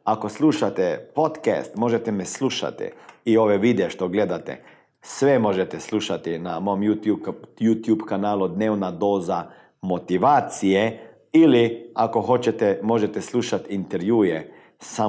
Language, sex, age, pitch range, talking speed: Croatian, male, 50-69, 95-130 Hz, 115 wpm